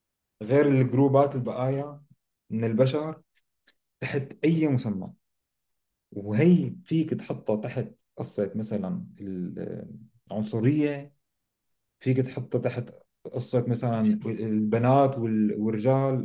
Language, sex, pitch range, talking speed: Arabic, male, 110-145 Hz, 80 wpm